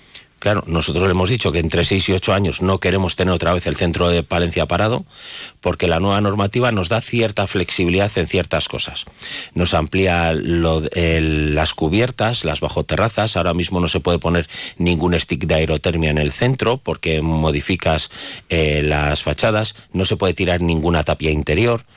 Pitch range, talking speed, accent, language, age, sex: 80-95 Hz, 175 wpm, Spanish, Spanish, 40-59, male